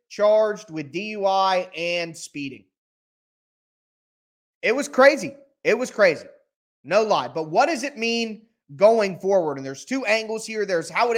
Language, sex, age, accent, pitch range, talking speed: English, male, 20-39, American, 175-225 Hz, 150 wpm